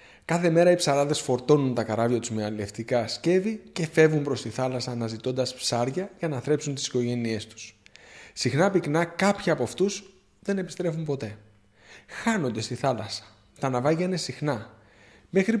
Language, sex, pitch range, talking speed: Greek, male, 120-185 Hz, 155 wpm